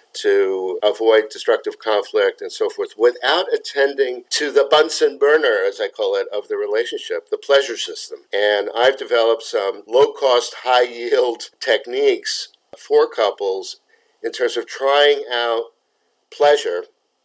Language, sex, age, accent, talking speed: English, male, 50-69, American, 130 wpm